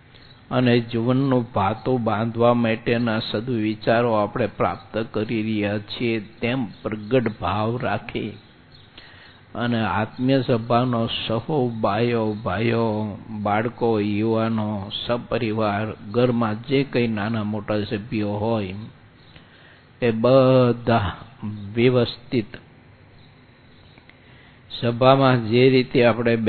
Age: 60-79